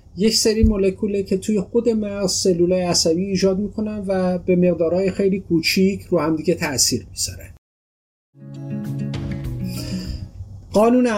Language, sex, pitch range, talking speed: Persian, male, 115-190 Hz, 115 wpm